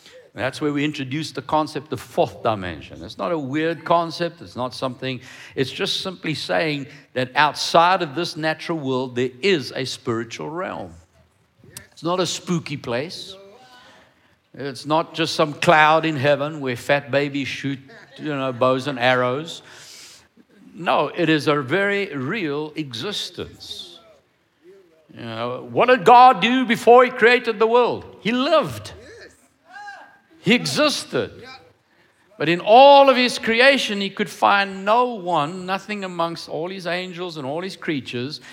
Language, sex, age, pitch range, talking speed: English, male, 60-79, 130-180 Hz, 150 wpm